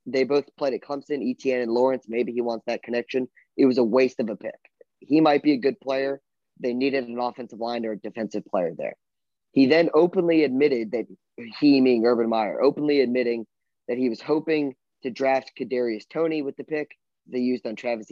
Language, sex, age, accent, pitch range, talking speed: English, male, 20-39, American, 120-140 Hz, 205 wpm